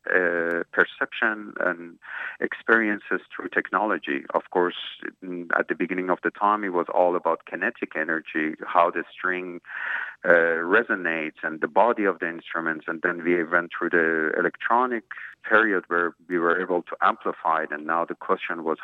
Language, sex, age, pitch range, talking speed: English, male, 50-69, 85-105 Hz, 160 wpm